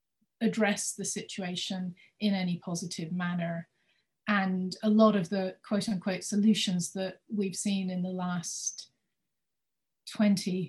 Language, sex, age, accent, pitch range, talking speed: English, female, 30-49, British, 180-205 Hz, 120 wpm